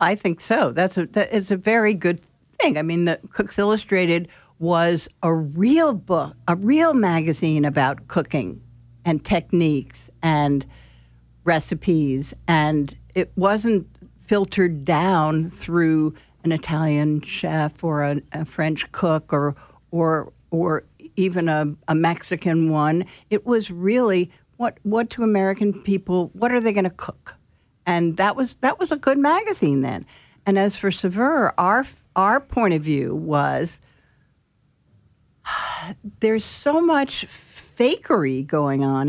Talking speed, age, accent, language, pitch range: 140 wpm, 60-79, American, English, 155-205 Hz